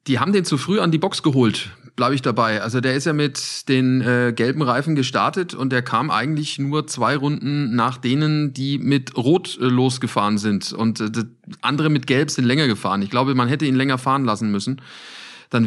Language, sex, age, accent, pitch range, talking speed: German, male, 30-49, German, 115-140 Hz, 210 wpm